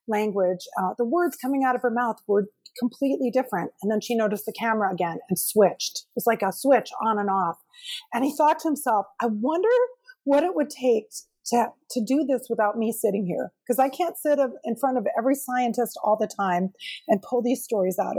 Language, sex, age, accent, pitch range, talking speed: English, female, 40-59, American, 205-280 Hz, 215 wpm